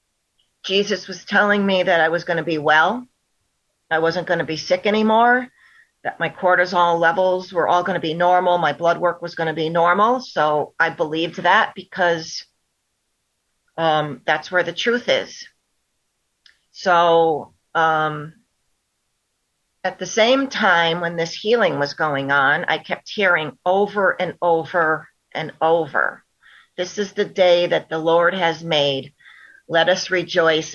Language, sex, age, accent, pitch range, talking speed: English, female, 40-59, American, 165-220 Hz, 155 wpm